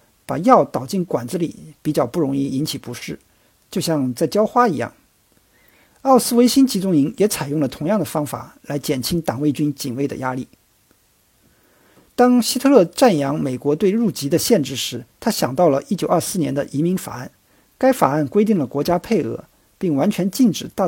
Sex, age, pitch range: male, 50-69, 145-210 Hz